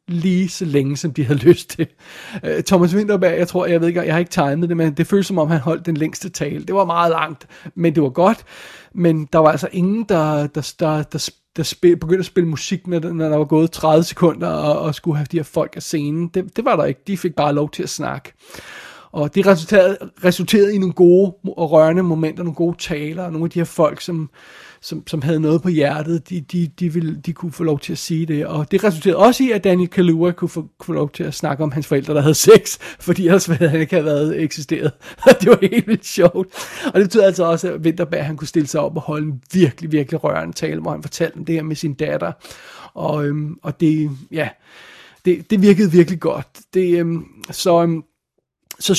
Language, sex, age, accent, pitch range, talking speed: Danish, male, 30-49, native, 155-185 Hz, 240 wpm